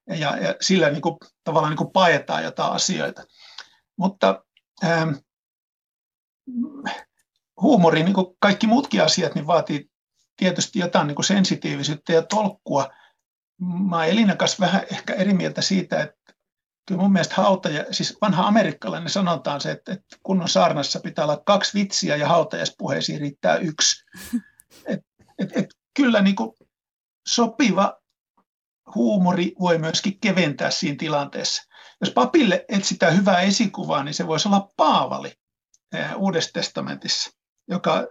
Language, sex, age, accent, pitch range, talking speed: Finnish, male, 60-79, native, 170-210 Hz, 125 wpm